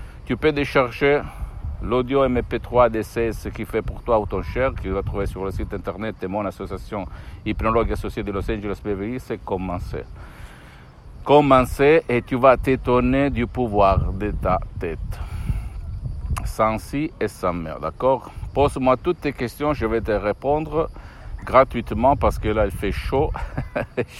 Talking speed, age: 155 wpm, 50-69